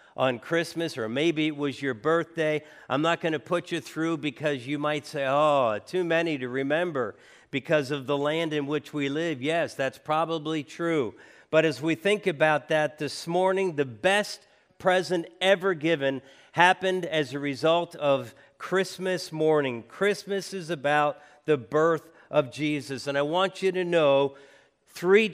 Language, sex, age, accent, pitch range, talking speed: English, male, 50-69, American, 145-185 Hz, 165 wpm